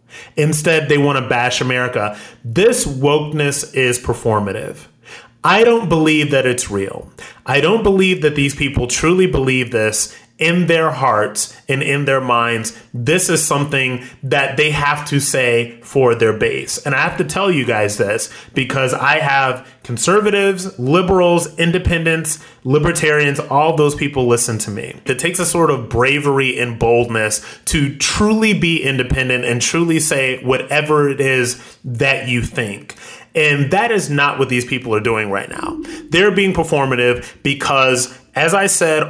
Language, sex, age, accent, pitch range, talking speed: English, male, 30-49, American, 125-160 Hz, 160 wpm